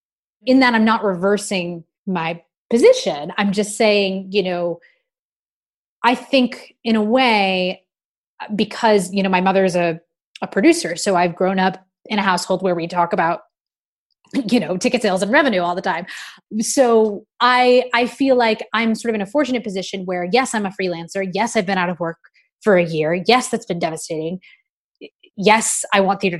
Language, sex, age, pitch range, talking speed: English, female, 20-39, 185-225 Hz, 180 wpm